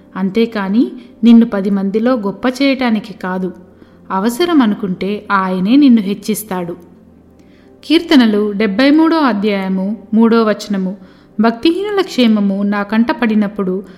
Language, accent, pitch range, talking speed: Telugu, native, 195-245 Hz, 90 wpm